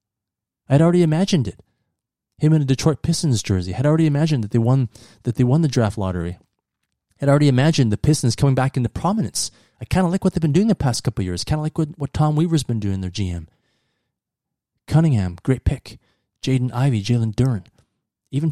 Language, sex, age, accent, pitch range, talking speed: English, male, 30-49, American, 110-150 Hz, 205 wpm